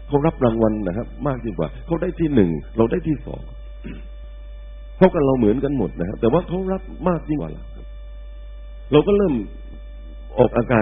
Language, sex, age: Thai, male, 60-79